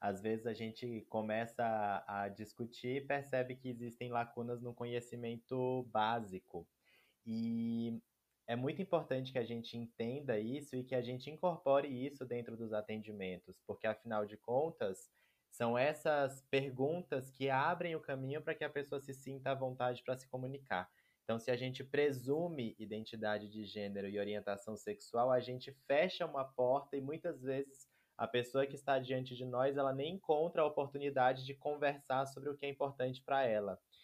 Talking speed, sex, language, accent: 170 wpm, male, Portuguese, Brazilian